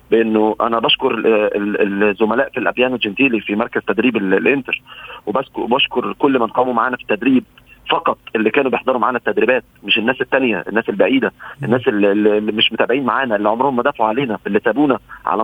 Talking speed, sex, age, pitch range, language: 170 wpm, male, 40-59, 115-145 Hz, Arabic